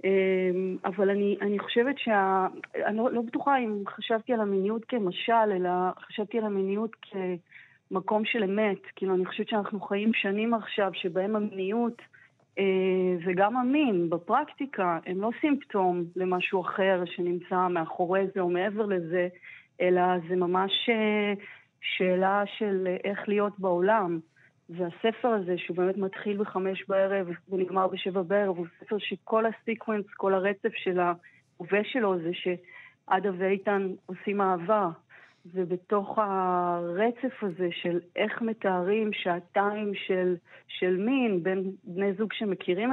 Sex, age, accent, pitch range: female, 30-49, native, 180-215 Hz